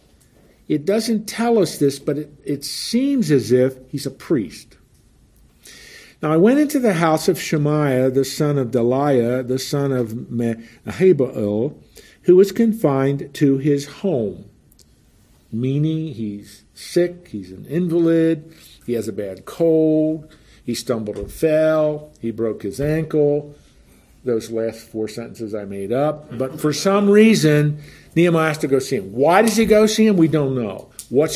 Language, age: English, 50-69